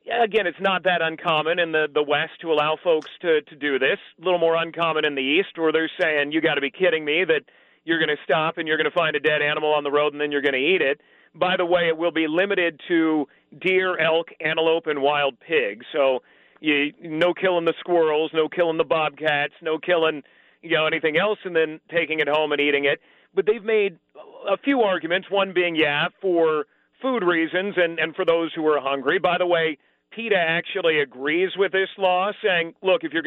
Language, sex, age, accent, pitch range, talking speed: English, male, 40-59, American, 155-195 Hz, 225 wpm